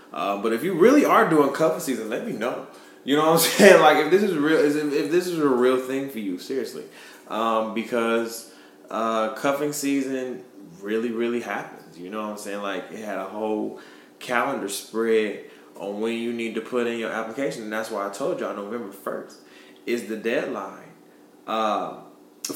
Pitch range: 110-130 Hz